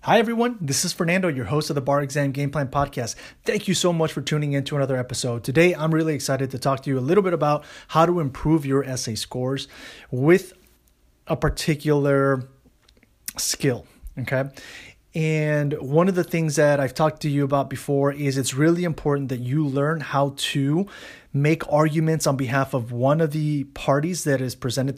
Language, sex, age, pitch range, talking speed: English, male, 30-49, 130-160 Hz, 190 wpm